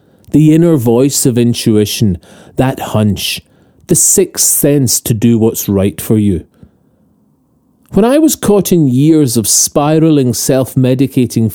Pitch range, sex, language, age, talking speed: 115-155 Hz, male, English, 40-59, 130 wpm